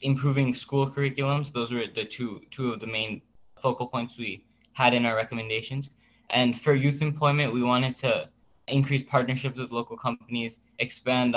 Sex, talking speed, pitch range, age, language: male, 165 wpm, 120-140 Hz, 10-29, English